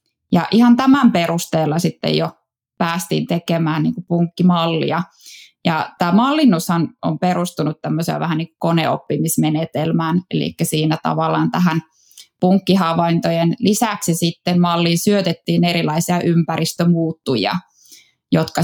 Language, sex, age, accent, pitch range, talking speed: Finnish, female, 20-39, native, 160-175 Hz, 100 wpm